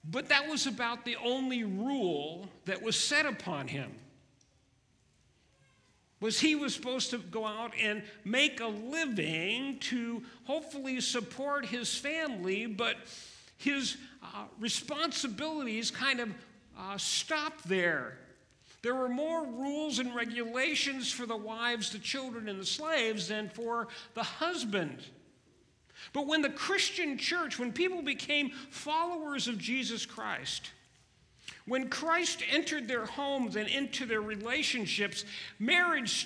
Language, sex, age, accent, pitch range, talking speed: English, male, 50-69, American, 200-275 Hz, 125 wpm